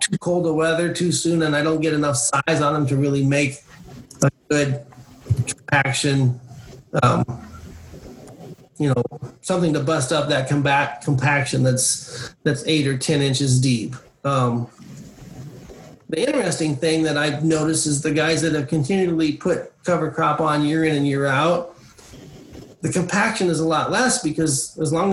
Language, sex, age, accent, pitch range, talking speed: English, male, 40-59, American, 145-180 Hz, 160 wpm